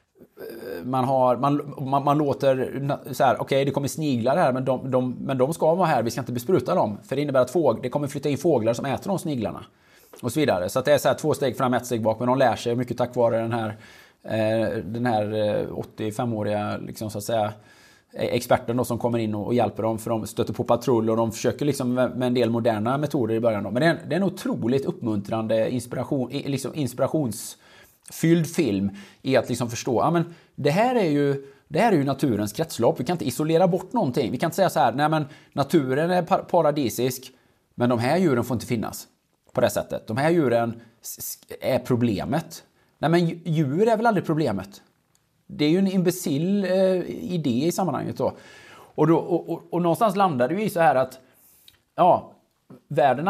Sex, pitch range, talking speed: male, 120-160 Hz, 215 wpm